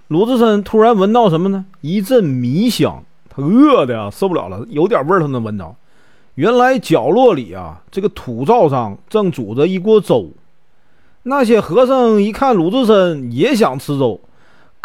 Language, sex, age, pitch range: Chinese, male, 40-59, 120-205 Hz